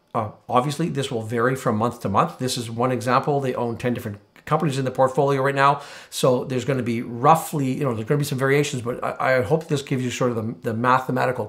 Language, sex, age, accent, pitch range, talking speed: English, male, 50-69, American, 120-145 Hz, 245 wpm